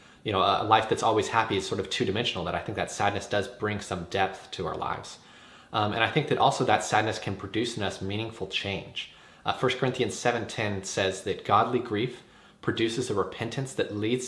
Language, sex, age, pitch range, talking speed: English, male, 30-49, 95-115 Hz, 210 wpm